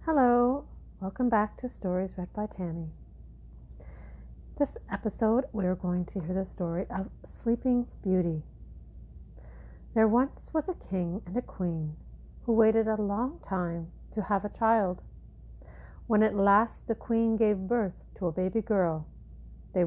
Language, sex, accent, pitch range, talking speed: English, female, American, 155-220 Hz, 150 wpm